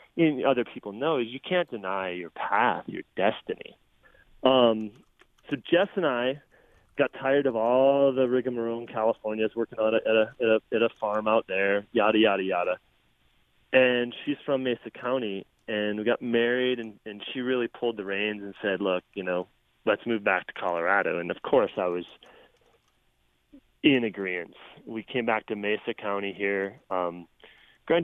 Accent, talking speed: American, 170 wpm